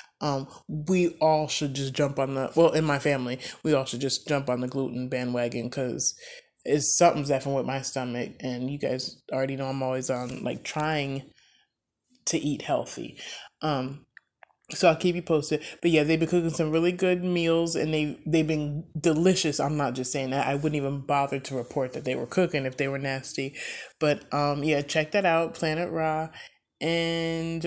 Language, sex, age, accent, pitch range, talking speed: English, male, 20-39, American, 140-165 Hz, 195 wpm